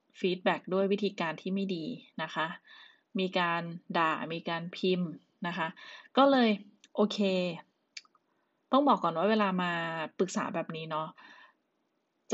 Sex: female